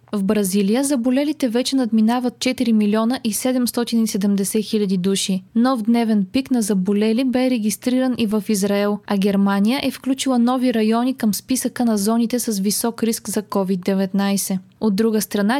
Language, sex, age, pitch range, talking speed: Bulgarian, female, 20-39, 205-250 Hz, 145 wpm